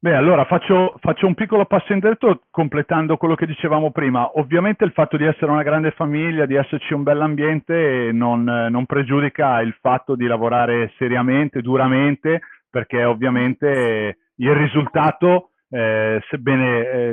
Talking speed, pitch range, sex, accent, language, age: 140 wpm, 120-150 Hz, male, native, Italian, 40-59